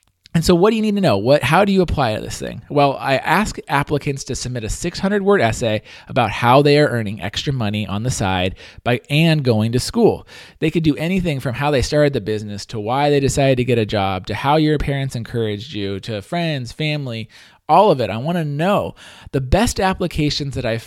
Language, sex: English, male